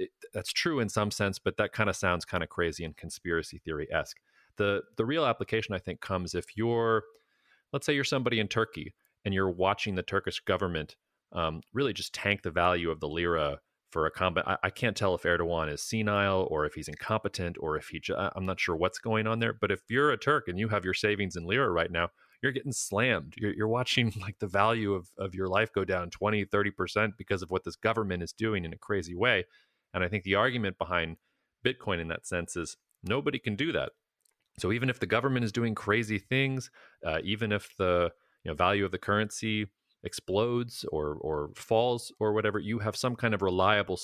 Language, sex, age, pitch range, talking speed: English, male, 30-49, 90-115 Hz, 220 wpm